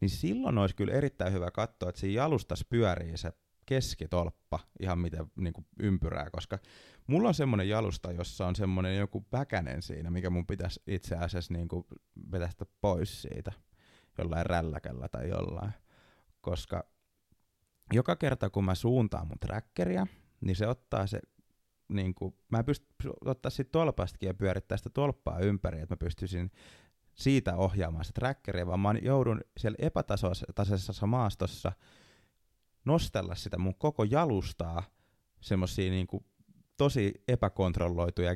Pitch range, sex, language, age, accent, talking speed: 90-110 Hz, male, Finnish, 30-49, native, 140 wpm